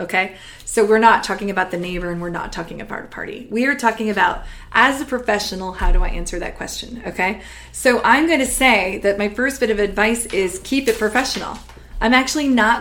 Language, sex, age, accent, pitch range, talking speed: English, female, 20-39, American, 195-235 Hz, 215 wpm